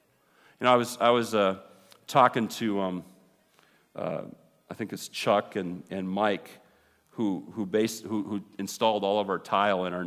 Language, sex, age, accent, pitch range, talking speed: English, male, 40-59, American, 90-105 Hz, 180 wpm